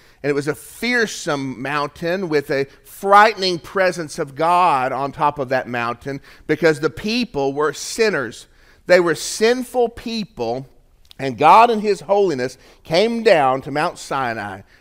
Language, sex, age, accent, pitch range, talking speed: English, male, 40-59, American, 135-195 Hz, 145 wpm